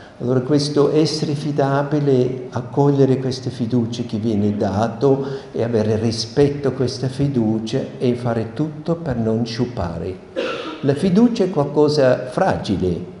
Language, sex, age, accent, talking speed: Italian, male, 60-79, native, 125 wpm